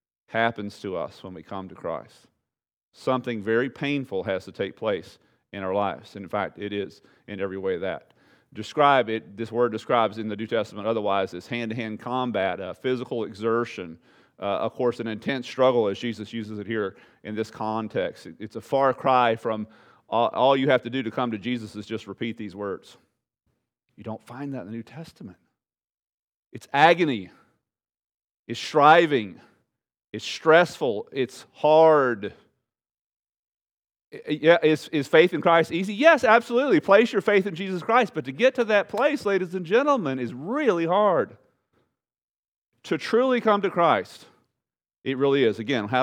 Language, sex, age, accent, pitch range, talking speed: English, male, 40-59, American, 105-145 Hz, 165 wpm